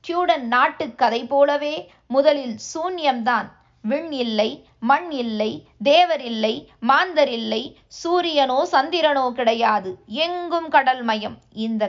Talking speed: 100 wpm